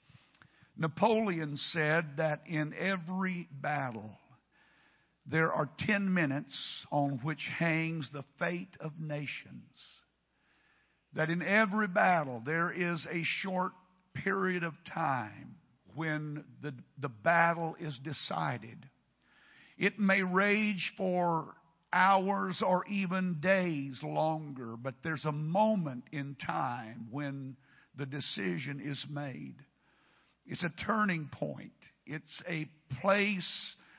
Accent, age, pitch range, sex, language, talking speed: American, 50-69, 150-190 Hz, male, English, 110 wpm